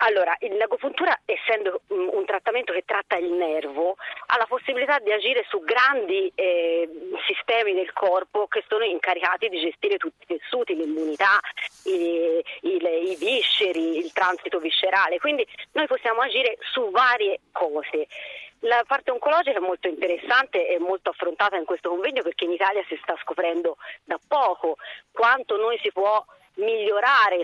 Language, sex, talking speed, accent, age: Italian, female, 145 wpm, native, 40-59